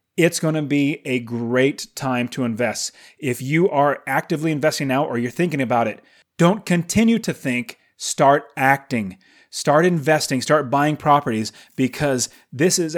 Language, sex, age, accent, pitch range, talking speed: English, male, 30-49, American, 125-160 Hz, 155 wpm